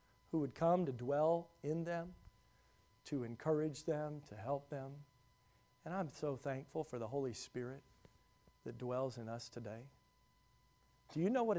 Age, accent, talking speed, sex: 40-59, American, 155 wpm, male